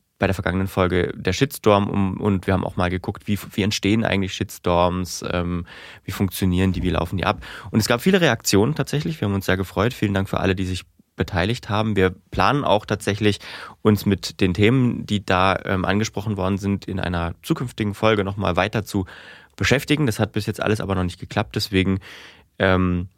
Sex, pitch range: male, 95-110 Hz